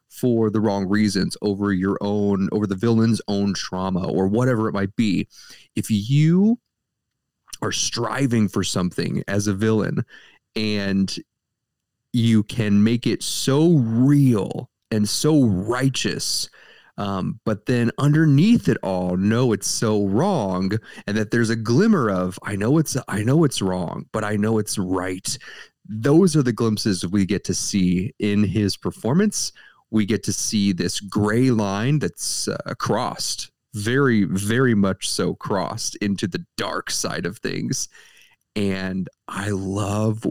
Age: 30-49